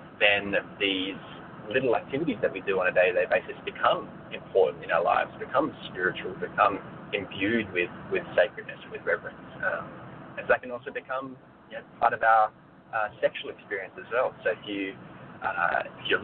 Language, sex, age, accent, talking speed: English, male, 20-39, Australian, 175 wpm